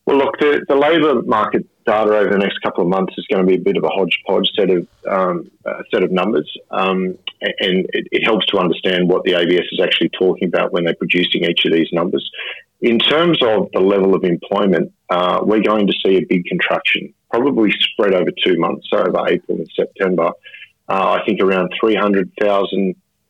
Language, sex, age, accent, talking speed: English, male, 30-49, Australian, 205 wpm